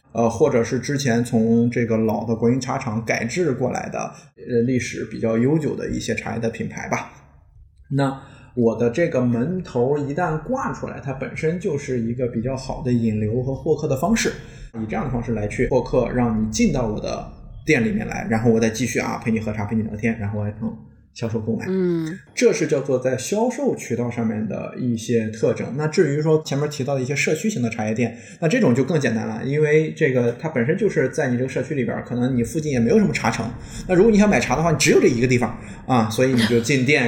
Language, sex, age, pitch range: Chinese, male, 20-39, 115-145 Hz